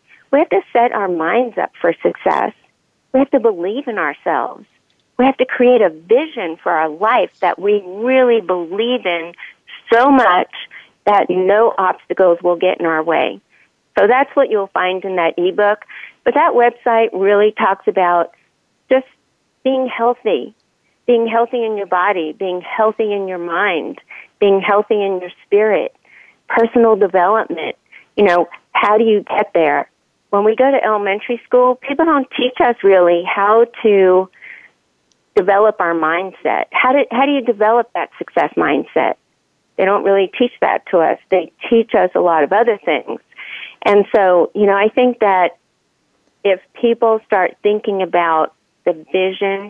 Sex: female